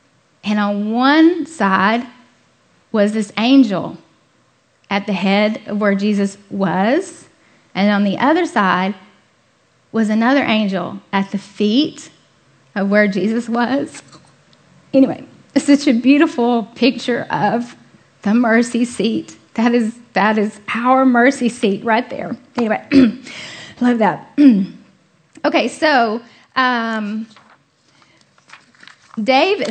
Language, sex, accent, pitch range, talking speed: English, female, American, 200-250 Hz, 110 wpm